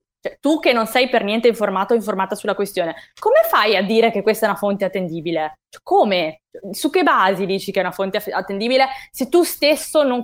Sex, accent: female, native